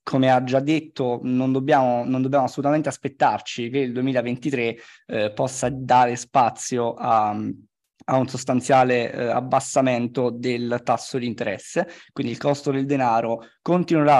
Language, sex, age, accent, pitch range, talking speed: Italian, male, 20-39, native, 125-145 Hz, 140 wpm